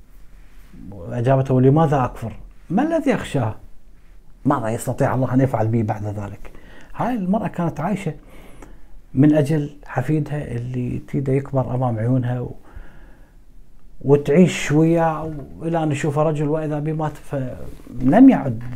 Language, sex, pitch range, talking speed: Arabic, male, 115-155 Hz, 115 wpm